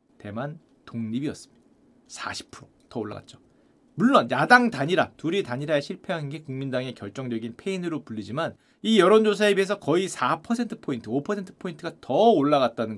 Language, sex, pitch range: Korean, male, 170-240 Hz